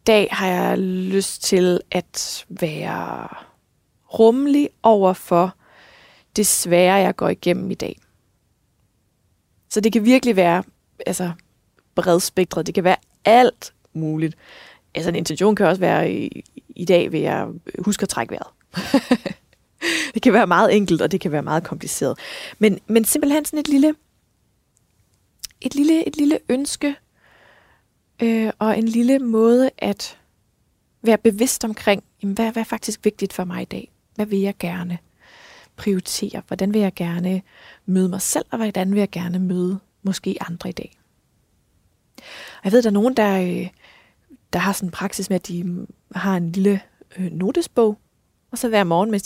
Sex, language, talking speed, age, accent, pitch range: female, Danish, 165 wpm, 20-39, native, 185-235 Hz